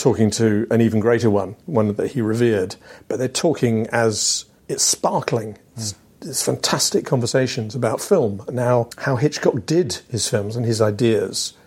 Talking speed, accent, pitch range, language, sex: 160 wpm, British, 110-135 Hz, English, male